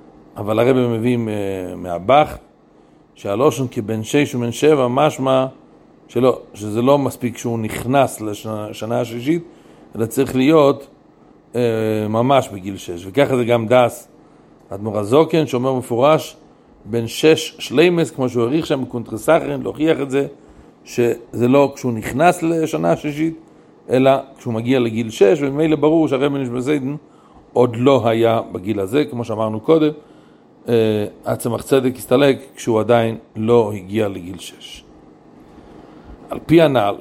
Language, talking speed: Hebrew, 130 wpm